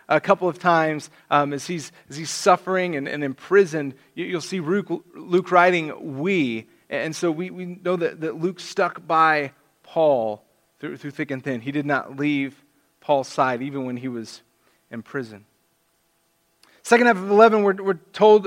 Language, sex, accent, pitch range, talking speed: English, male, American, 150-190 Hz, 170 wpm